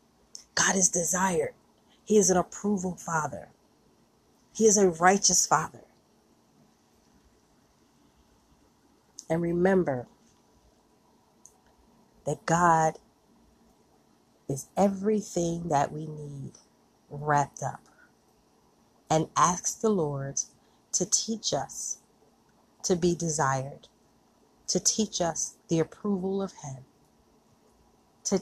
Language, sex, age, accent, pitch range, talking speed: English, female, 30-49, American, 140-190 Hz, 90 wpm